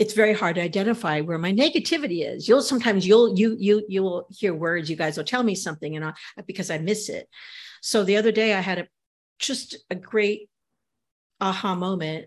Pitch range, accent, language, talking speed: 155-200 Hz, American, English, 205 wpm